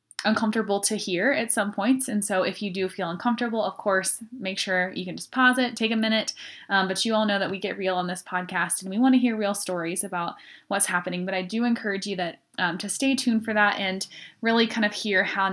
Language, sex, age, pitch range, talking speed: English, female, 10-29, 185-230 Hz, 250 wpm